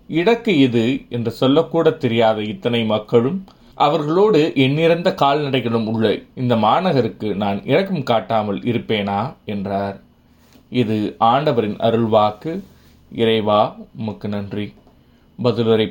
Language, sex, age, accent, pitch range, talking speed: Tamil, male, 30-49, native, 110-140 Hz, 85 wpm